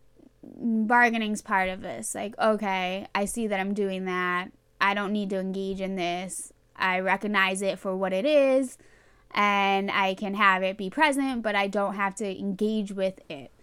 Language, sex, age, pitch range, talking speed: English, female, 10-29, 200-240 Hz, 180 wpm